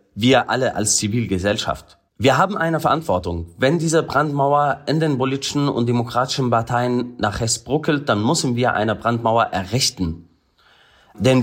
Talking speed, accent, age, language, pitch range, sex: 140 wpm, German, 30-49, German, 105-135 Hz, male